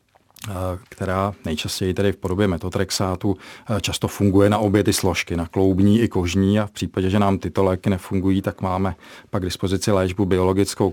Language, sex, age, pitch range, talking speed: Czech, male, 40-59, 95-100 Hz, 170 wpm